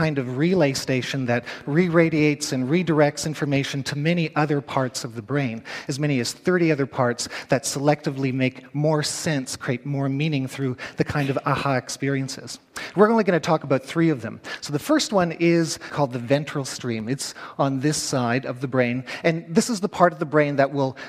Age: 40-59